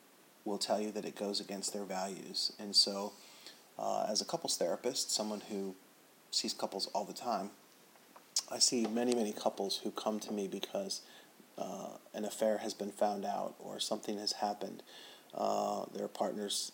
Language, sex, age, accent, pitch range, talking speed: English, male, 30-49, American, 100-110 Hz, 170 wpm